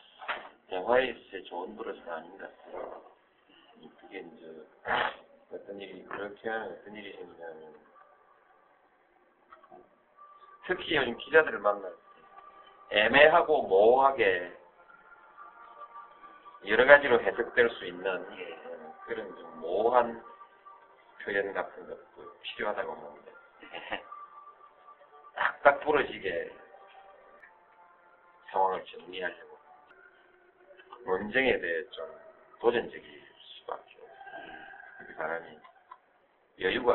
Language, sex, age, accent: Korean, male, 40-59, native